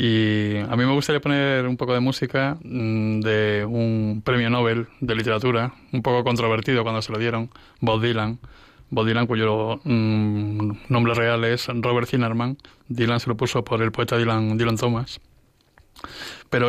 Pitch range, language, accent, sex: 115-130 Hz, Spanish, Spanish, male